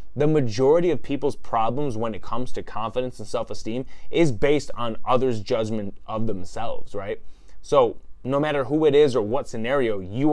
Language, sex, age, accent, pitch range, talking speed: English, male, 20-39, American, 115-150 Hz, 175 wpm